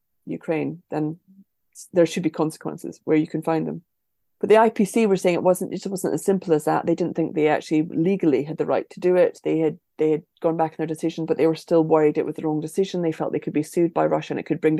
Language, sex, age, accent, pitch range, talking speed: English, female, 30-49, British, 155-180 Hz, 275 wpm